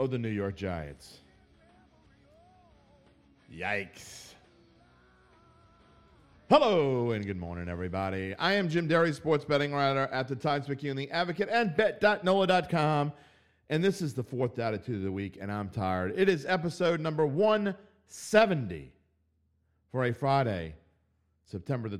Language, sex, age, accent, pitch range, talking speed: English, male, 40-59, American, 80-130 Hz, 135 wpm